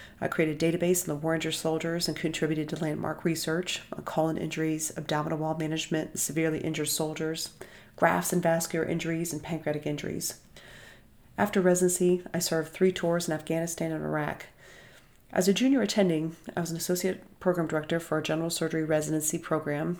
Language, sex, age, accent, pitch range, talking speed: English, female, 40-59, American, 155-180 Hz, 165 wpm